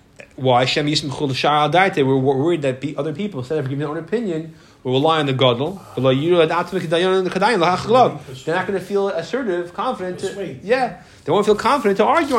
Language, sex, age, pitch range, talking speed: English, male, 20-39, 135-190 Hz, 120 wpm